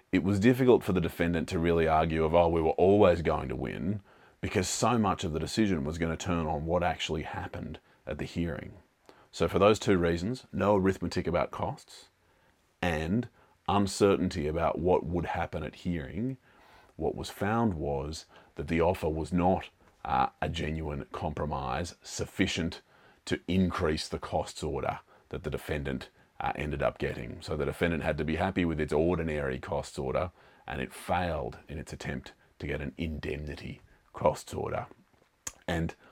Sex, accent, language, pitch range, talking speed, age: male, Australian, English, 75-95 Hz, 170 wpm, 30-49